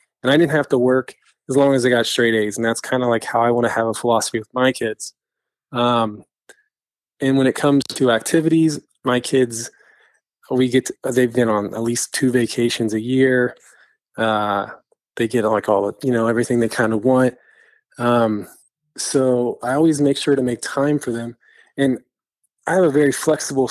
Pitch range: 120-135 Hz